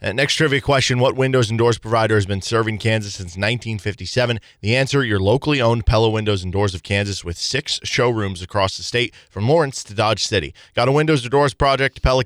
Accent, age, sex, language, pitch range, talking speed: American, 20-39, male, English, 105-125 Hz, 210 wpm